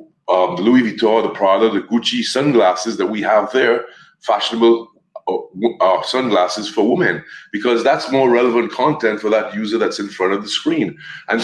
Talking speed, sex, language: 185 wpm, male, English